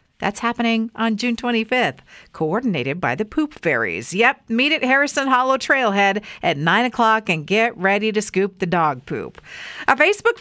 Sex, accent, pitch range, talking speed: female, American, 200-315 Hz, 165 wpm